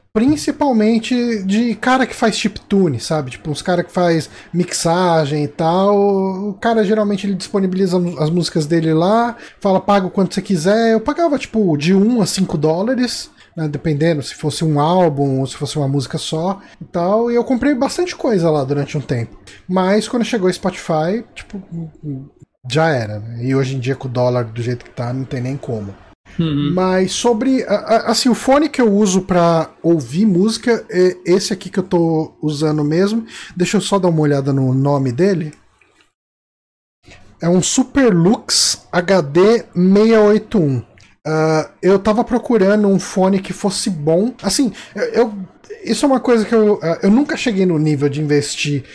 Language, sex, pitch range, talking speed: Portuguese, male, 150-215 Hz, 175 wpm